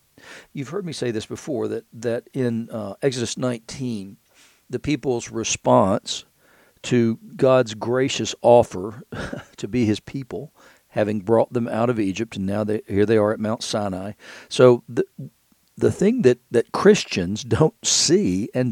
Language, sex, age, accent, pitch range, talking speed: English, male, 50-69, American, 110-135 Hz, 150 wpm